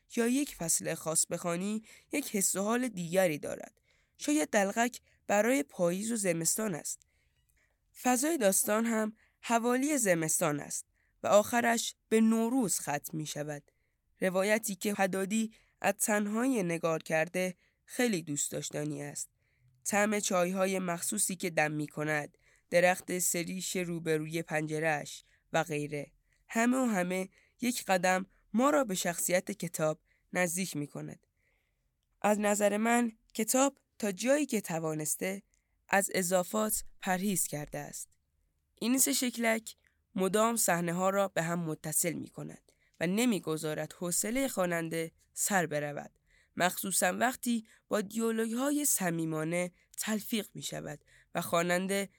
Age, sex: 20-39, female